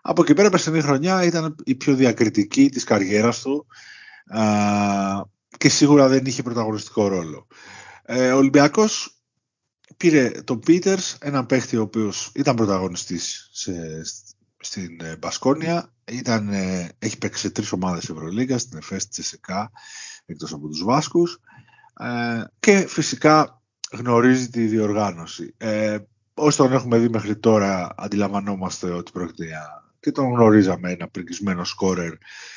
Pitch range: 95-130 Hz